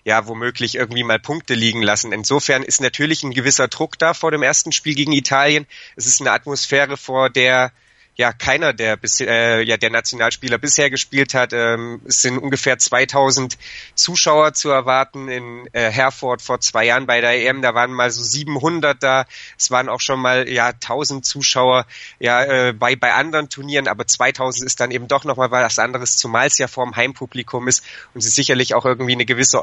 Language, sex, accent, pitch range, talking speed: German, male, German, 125-145 Hz, 195 wpm